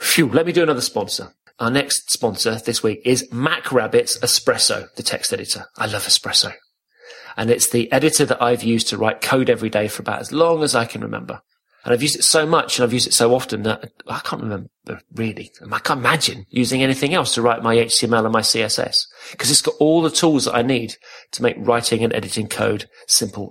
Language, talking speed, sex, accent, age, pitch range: English, 220 wpm, male, British, 30-49, 115-140 Hz